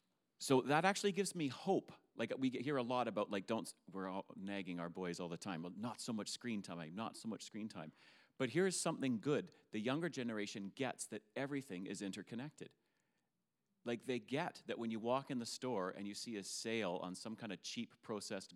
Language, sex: English, male